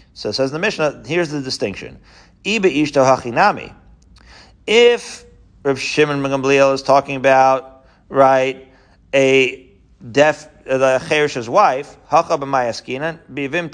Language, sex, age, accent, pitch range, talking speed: English, male, 40-59, American, 130-155 Hz, 120 wpm